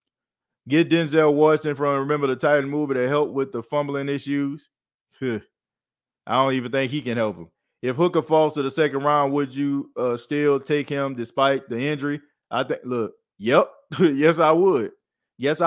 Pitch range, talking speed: 130-150 Hz, 175 wpm